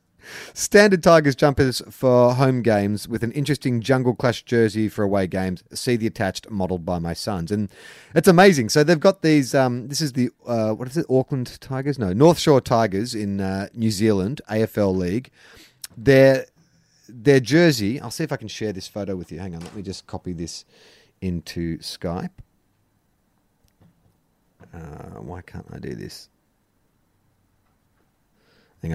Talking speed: 160 wpm